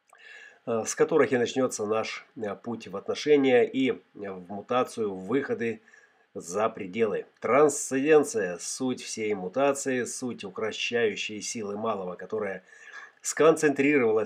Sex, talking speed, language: male, 100 wpm, Russian